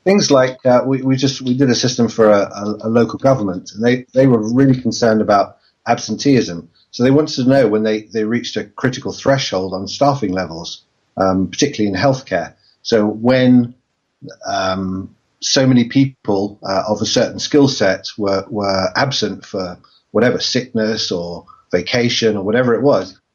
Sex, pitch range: male, 105-125 Hz